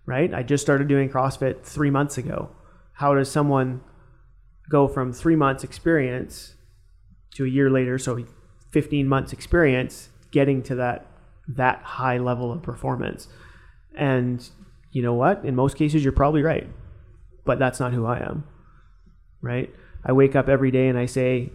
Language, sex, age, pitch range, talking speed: English, male, 30-49, 120-140 Hz, 160 wpm